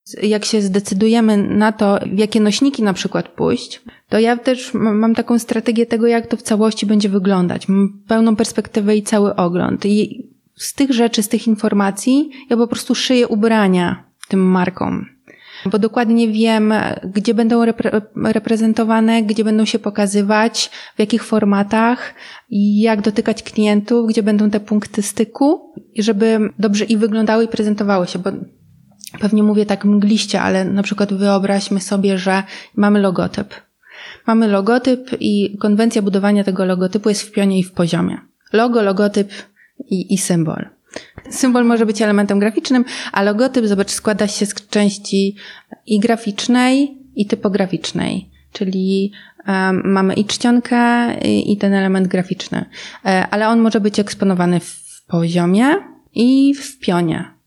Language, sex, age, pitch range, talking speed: Polish, female, 20-39, 200-230 Hz, 145 wpm